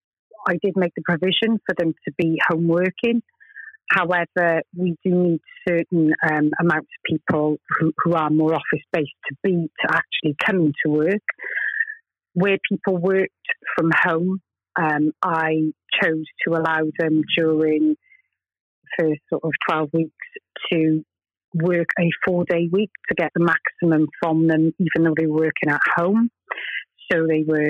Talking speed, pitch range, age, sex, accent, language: 155 wpm, 160-190 Hz, 30-49, female, British, English